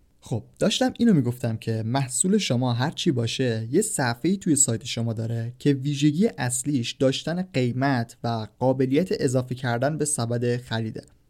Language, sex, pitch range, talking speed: Persian, male, 120-150 Hz, 150 wpm